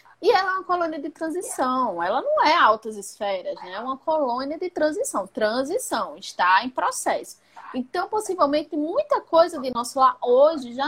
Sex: female